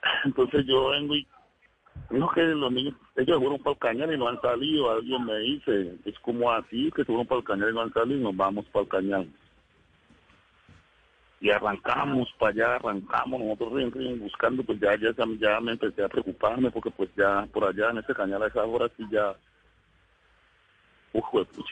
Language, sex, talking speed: Spanish, male, 195 wpm